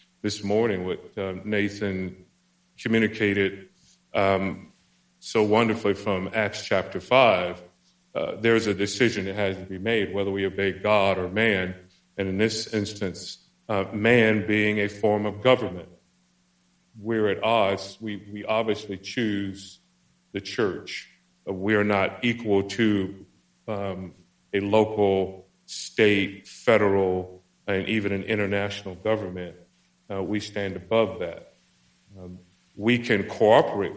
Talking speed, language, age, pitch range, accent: 130 wpm, English, 40-59, 95-110 Hz, American